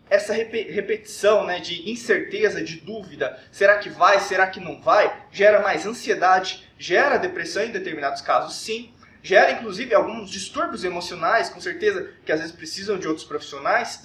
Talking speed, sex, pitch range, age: 160 wpm, male, 185-280 Hz, 20-39